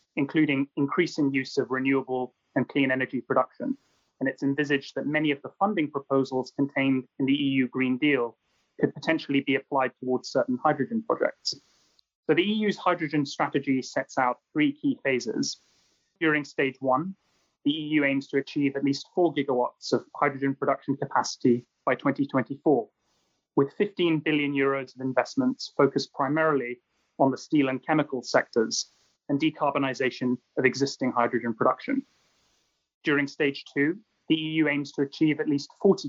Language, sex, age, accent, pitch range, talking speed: English, male, 30-49, British, 135-155 Hz, 150 wpm